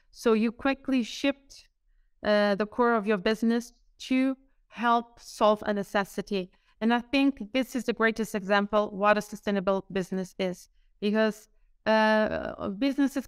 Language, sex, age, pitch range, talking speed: English, female, 20-39, 200-225 Hz, 140 wpm